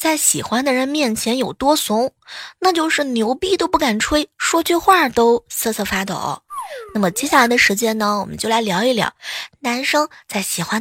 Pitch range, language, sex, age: 200-295 Hz, Chinese, female, 20-39